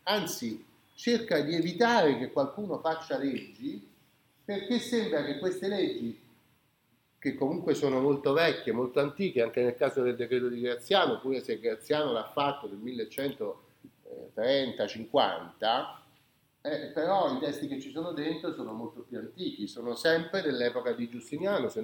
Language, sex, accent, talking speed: Italian, male, native, 140 wpm